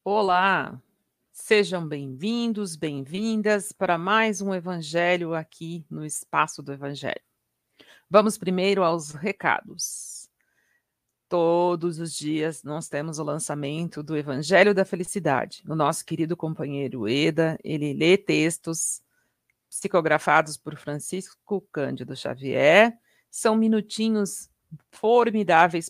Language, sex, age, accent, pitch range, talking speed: Portuguese, female, 50-69, Brazilian, 155-205 Hz, 100 wpm